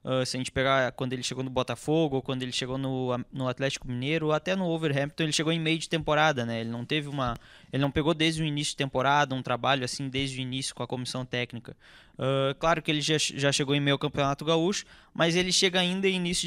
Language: Portuguese